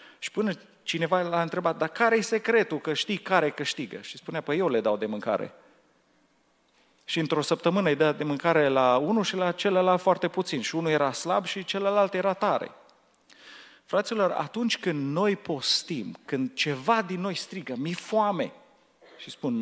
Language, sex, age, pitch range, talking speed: Romanian, male, 40-59, 160-210 Hz, 175 wpm